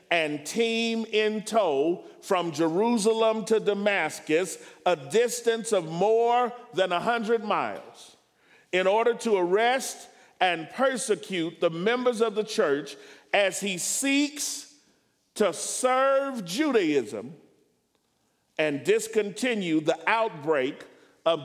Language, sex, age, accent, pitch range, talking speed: English, male, 50-69, American, 175-240 Hz, 105 wpm